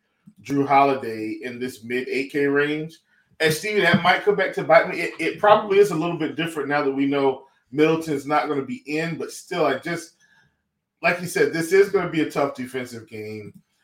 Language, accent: English, American